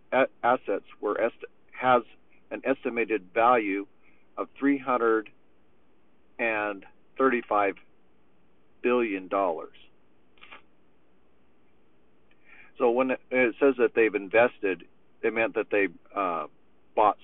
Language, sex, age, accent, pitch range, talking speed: English, male, 50-69, American, 95-120 Hz, 75 wpm